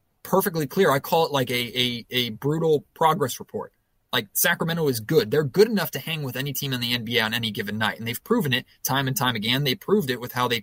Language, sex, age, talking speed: English, male, 20-39, 255 wpm